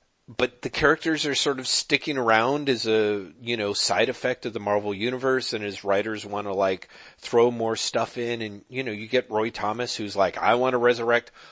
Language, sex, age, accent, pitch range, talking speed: English, male, 40-59, American, 100-130 Hz, 215 wpm